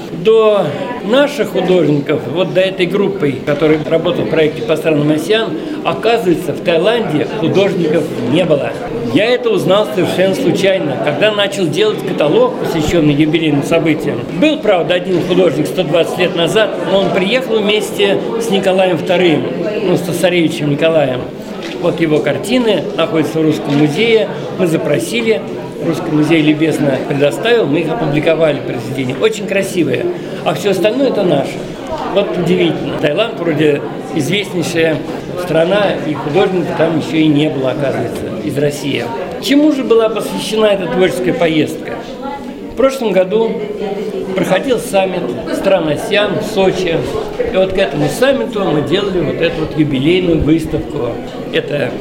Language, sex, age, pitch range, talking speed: Russian, male, 50-69, 155-205 Hz, 135 wpm